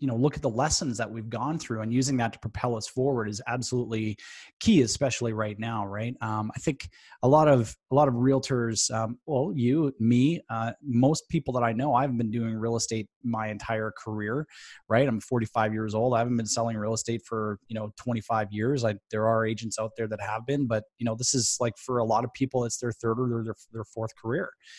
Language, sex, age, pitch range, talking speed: English, male, 20-39, 110-130 Hz, 230 wpm